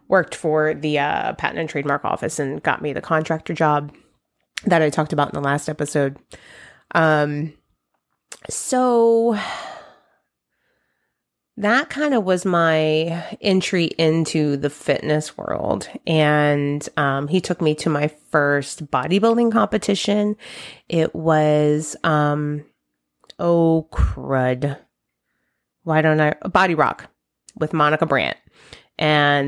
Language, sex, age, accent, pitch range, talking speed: English, female, 30-49, American, 145-165 Hz, 120 wpm